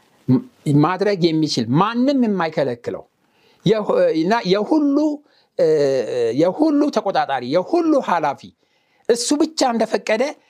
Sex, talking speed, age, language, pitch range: male, 70 wpm, 60-79, Amharic, 165-255 Hz